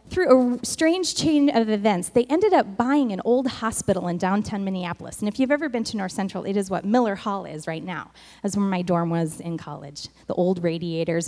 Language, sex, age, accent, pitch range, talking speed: English, female, 20-39, American, 195-275 Hz, 225 wpm